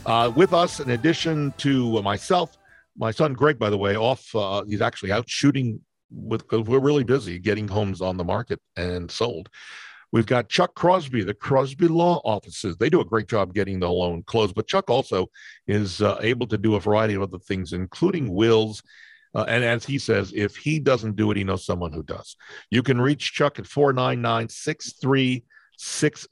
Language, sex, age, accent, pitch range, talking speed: English, male, 50-69, American, 100-140 Hz, 200 wpm